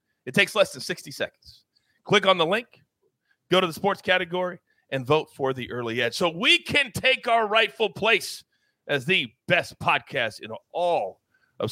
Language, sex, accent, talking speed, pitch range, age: English, male, American, 180 wpm, 145-215 Hz, 40-59